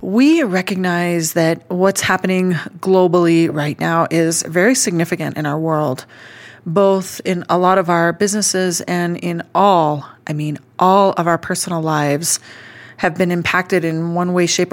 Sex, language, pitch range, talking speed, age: female, English, 160-190 Hz, 155 wpm, 30-49